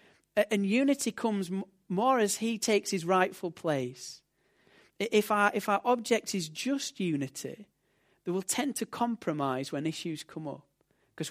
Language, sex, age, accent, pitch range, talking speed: English, male, 40-59, British, 130-175 Hz, 145 wpm